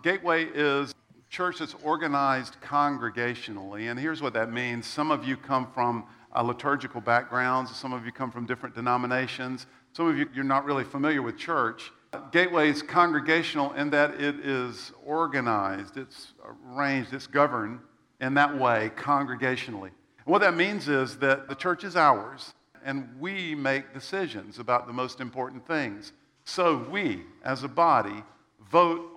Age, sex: 50-69, male